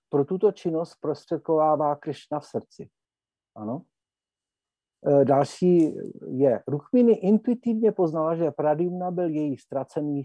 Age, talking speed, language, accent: 50-69, 105 wpm, Czech, native